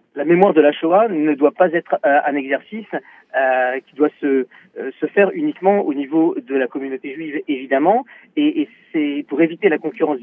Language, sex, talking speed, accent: French, male, 195 wpm, French